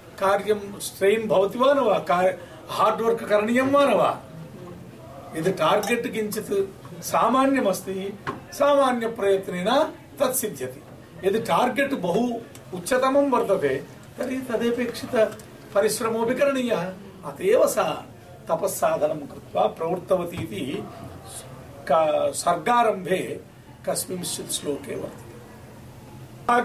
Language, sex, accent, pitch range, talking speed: English, male, Indian, 160-235 Hz, 90 wpm